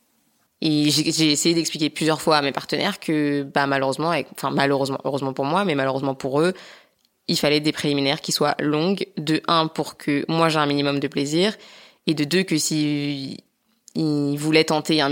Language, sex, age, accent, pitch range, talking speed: French, female, 20-39, French, 140-170 Hz, 190 wpm